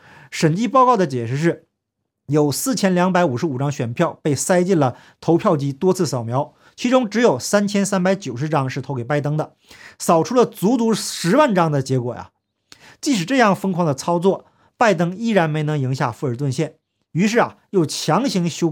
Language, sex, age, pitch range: Chinese, male, 50-69, 140-205 Hz